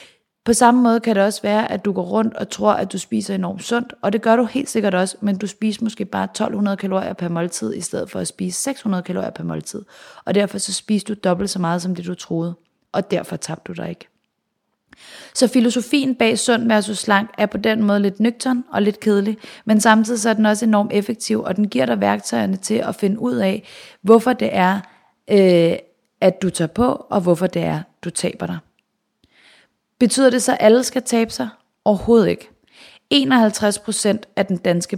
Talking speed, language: 210 wpm, Danish